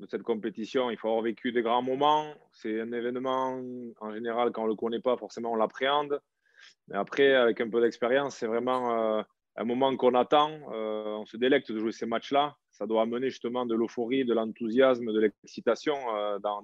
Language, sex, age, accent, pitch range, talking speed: French, male, 20-39, French, 100-125 Hz, 205 wpm